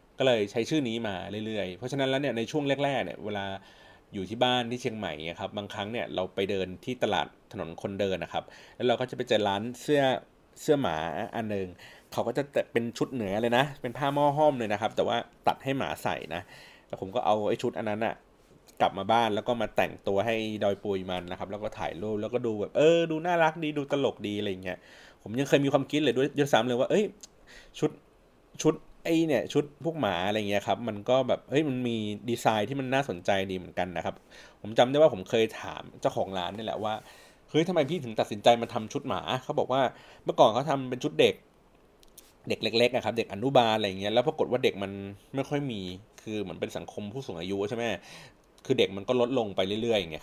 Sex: male